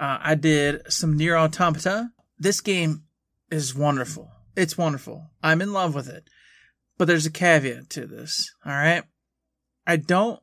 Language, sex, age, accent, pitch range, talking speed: English, male, 30-49, American, 150-190 Hz, 155 wpm